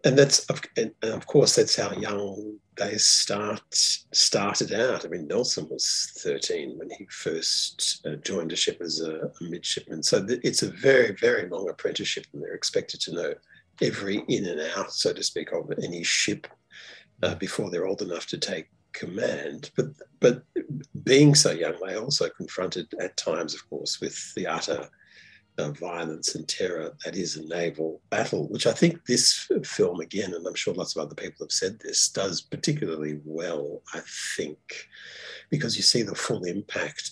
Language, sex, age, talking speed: English, male, 50-69, 175 wpm